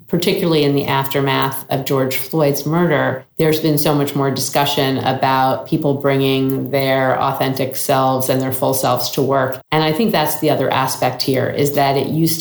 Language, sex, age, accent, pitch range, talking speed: English, female, 40-59, American, 130-150 Hz, 185 wpm